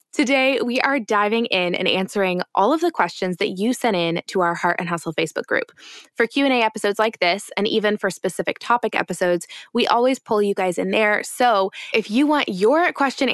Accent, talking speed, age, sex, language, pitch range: American, 205 wpm, 20-39, female, English, 180-245 Hz